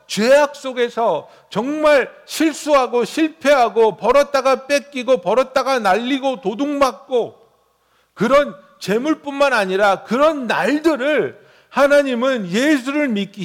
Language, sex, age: Korean, male, 60-79